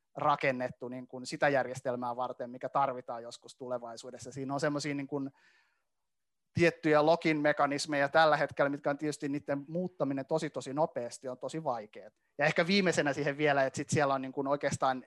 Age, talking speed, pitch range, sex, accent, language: 30-49, 165 wpm, 125-150 Hz, male, native, Finnish